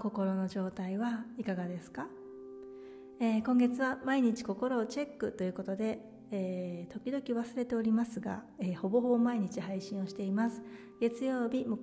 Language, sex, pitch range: Japanese, female, 190-230 Hz